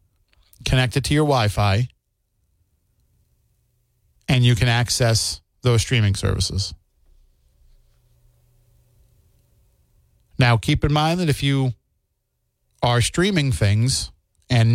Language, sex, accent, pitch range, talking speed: English, male, American, 105-135 Hz, 95 wpm